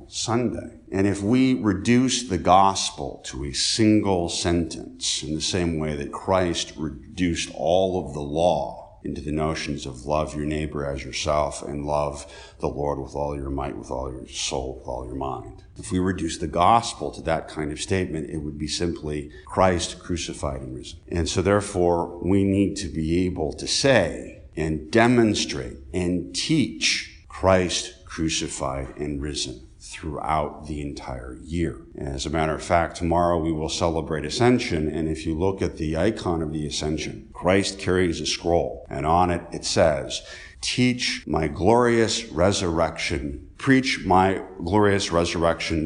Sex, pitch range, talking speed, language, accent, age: male, 75-95 Hz, 160 wpm, English, American, 50-69